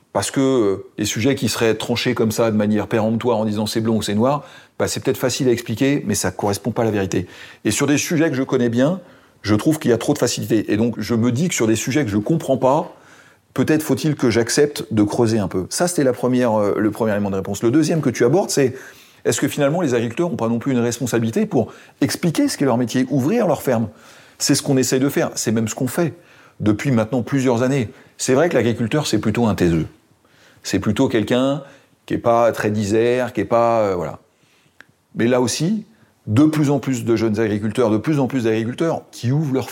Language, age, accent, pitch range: French, 40-59, French, 110-135 Hz